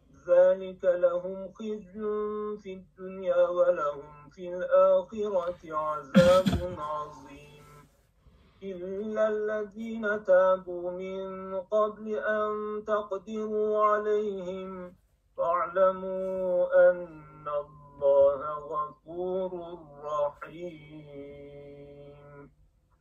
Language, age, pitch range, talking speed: Turkish, 50-69, 150-190 Hz, 55 wpm